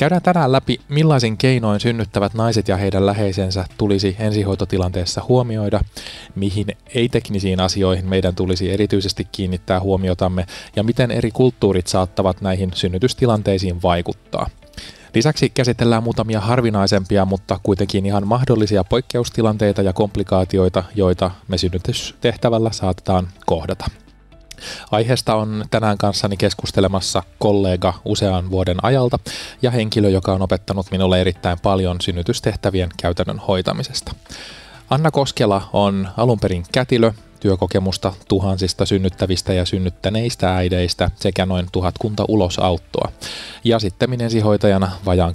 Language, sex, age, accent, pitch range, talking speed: Finnish, male, 20-39, native, 95-110 Hz, 110 wpm